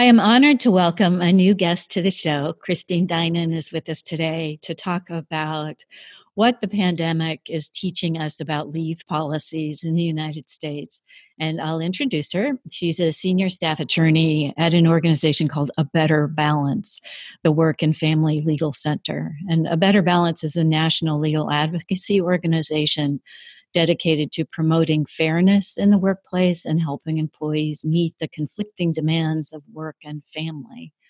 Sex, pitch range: female, 155-180 Hz